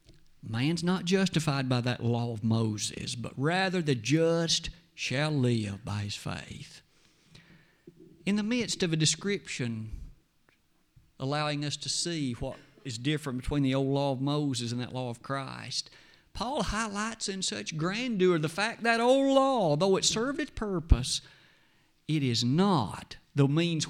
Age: 50-69